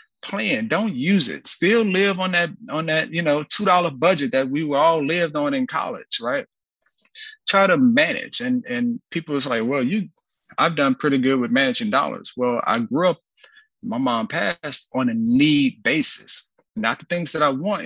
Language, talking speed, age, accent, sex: English, 195 wpm, 30-49, American, male